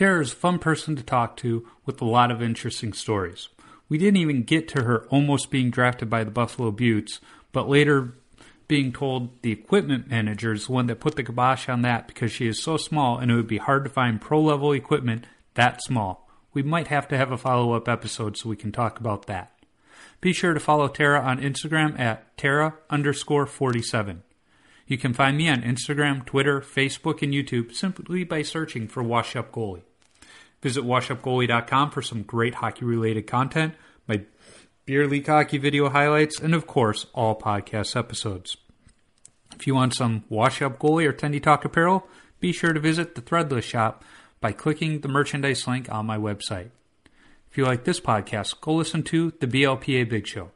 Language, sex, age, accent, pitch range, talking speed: English, male, 40-59, American, 115-150 Hz, 190 wpm